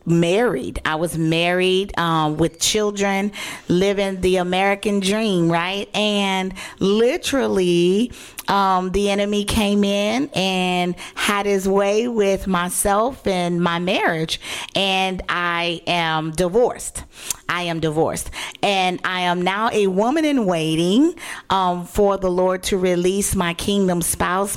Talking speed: 125 wpm